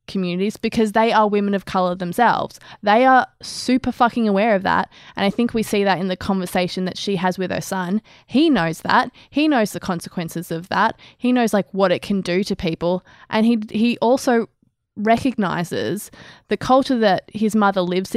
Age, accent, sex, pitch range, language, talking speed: 20-39, Australian, female, 185-230 Hz, English, 195 wpm